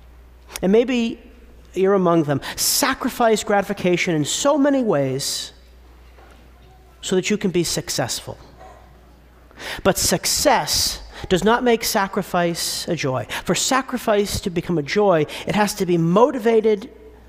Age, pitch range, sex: 40-59, 125-205 Hz, male